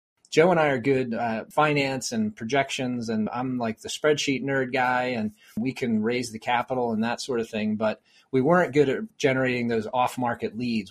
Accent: American